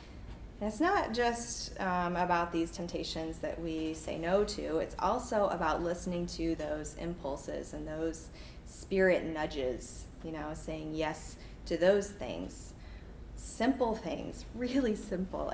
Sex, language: female, English